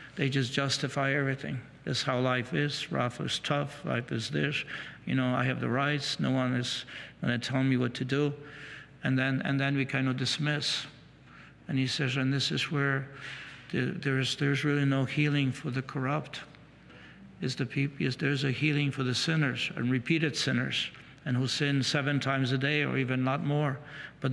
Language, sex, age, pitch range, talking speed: English, male, 60-79, 130-145 Hz, 195 wpm